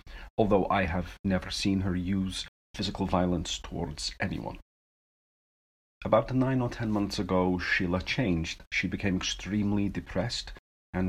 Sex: male